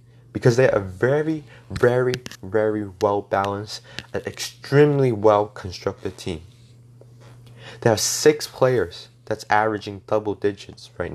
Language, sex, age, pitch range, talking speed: English, male, 20-39, 110-125 Hz, 110 wpm